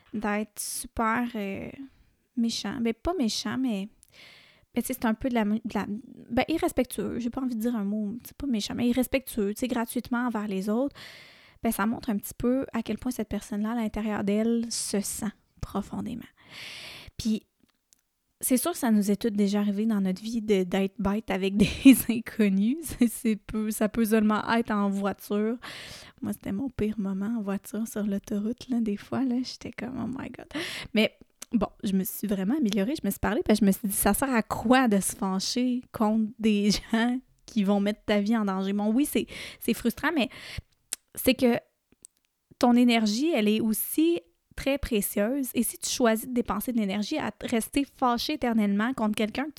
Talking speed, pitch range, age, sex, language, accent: 195 wpm, 210-250 Hz, 20-39, female, French, Canadian